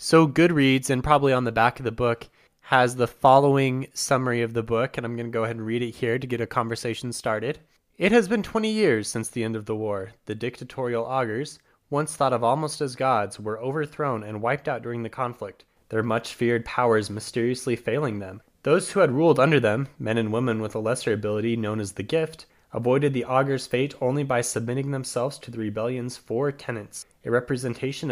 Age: 20-39